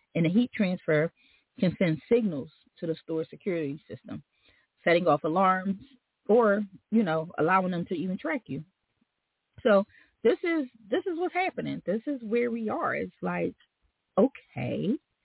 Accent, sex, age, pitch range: American, female, 30-49, 160-225 Hz